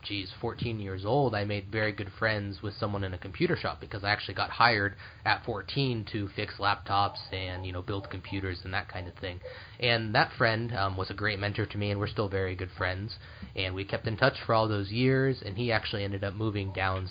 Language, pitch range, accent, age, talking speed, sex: Greek, 95-110 Hz, American, 20-39, 235 wpm, male